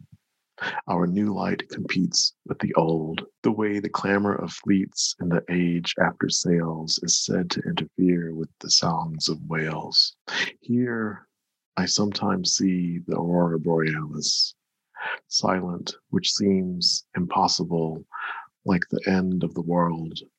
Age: 40-59